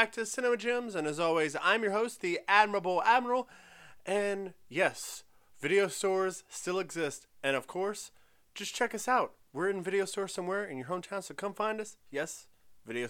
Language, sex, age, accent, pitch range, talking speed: English, male, 30-49, American, 115-185 Hz, 180 wpm